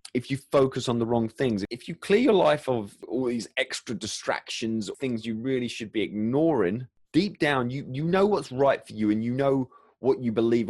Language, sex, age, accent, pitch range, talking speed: English, male, 30-49, British, 105-135 Hz, 215 wpm